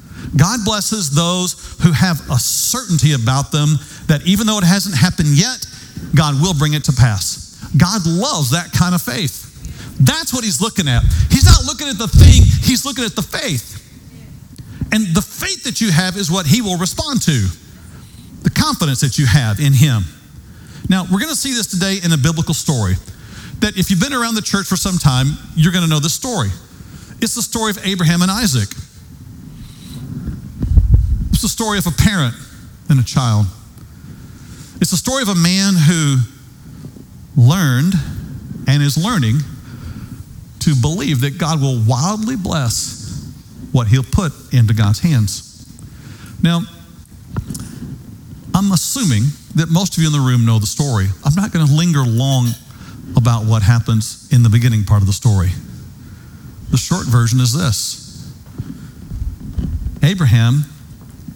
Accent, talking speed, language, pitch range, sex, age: American, 160 wpm, English, 120-180 Hz, male, 50-69